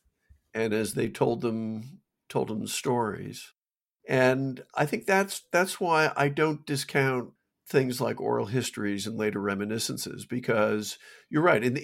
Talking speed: 135 wpm